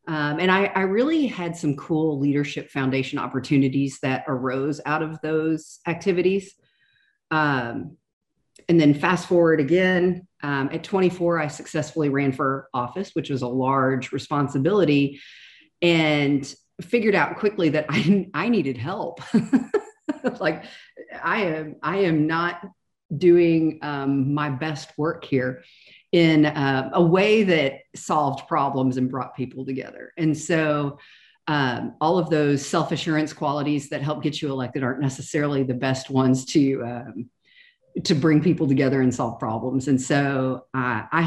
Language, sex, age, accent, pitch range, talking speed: English, female, 40-59, American, 135-170 Hz, 145 wpm